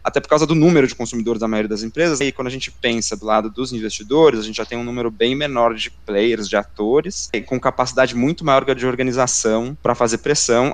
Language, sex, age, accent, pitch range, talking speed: Portuguese, male, 20-39, Brazilian, 110-145 Hz, 230 wpm